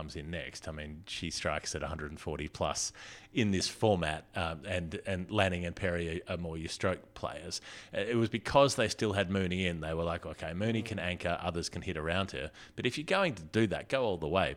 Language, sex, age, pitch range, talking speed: English, male, 30-49, 80-100 Hz, 220 wpm